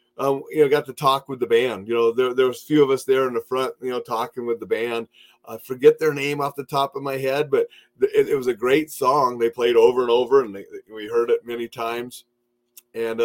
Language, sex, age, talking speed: English, male, 30-49, 270 wpm